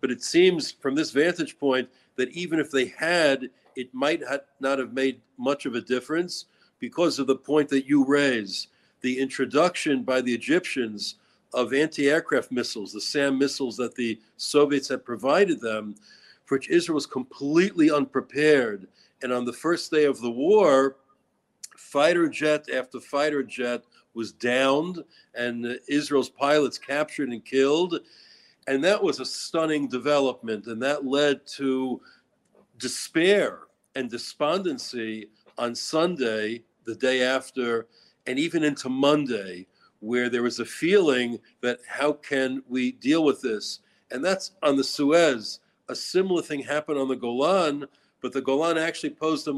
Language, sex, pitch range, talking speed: English, male, 125-150 Hz, 150 wpm